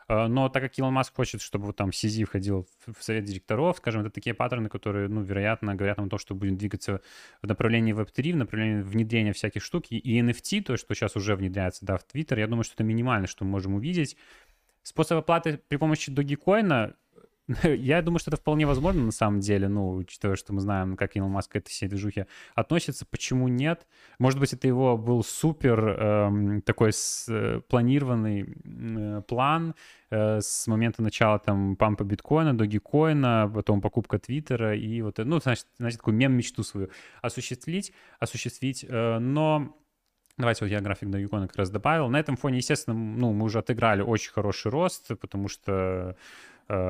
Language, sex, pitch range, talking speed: Russian, male, 105-135 Hz, 180 wpm